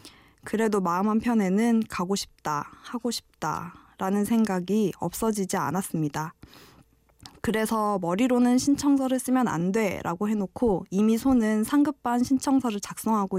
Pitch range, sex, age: 180-235 Hz, female, 20-39